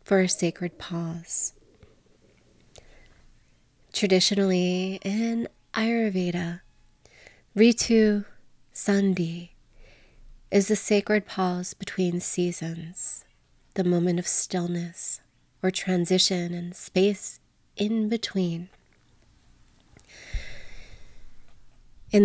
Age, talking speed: 30-49, 70 wpm